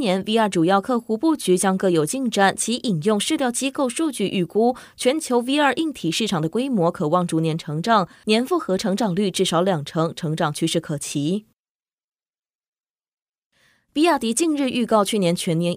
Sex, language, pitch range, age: female, Chinese, 175-245 Hz, 20-39